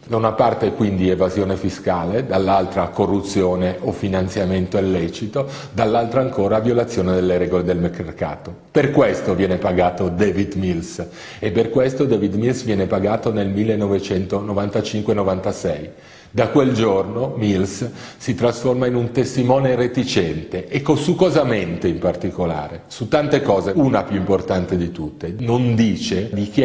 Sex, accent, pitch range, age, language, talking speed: male, native, 95-120 Hz, 40-59, Italian, 135 wpm